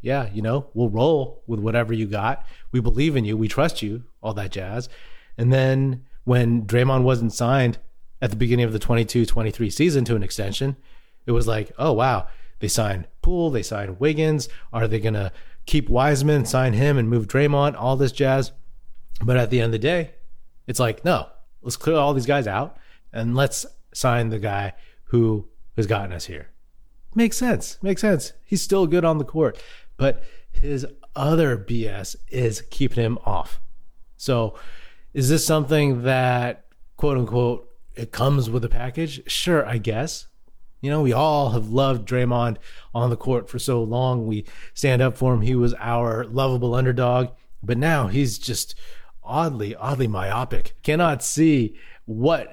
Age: 30-49